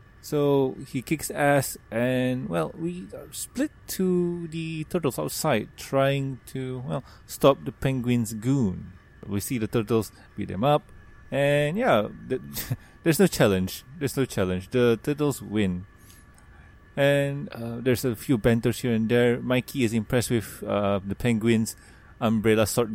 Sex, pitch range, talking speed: male, 110-140 Hz, 150 wpm